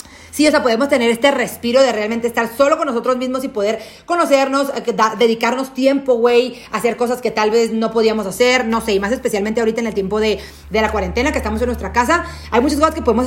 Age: 30-49